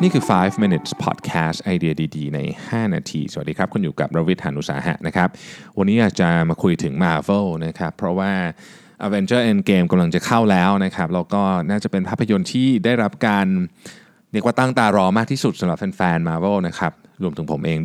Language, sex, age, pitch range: Thai, male, 20-39, 85-140 Hz